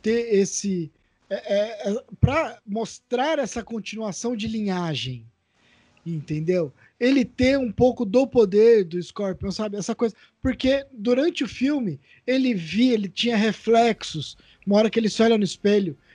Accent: Brazilian